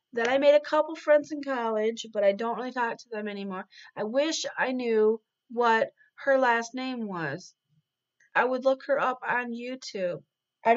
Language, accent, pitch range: English, American, 205-255 Hz